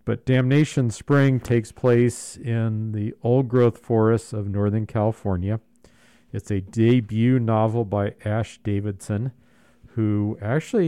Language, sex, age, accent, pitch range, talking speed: English, male, 50-69, American, 105-120 Hz, 120 wpm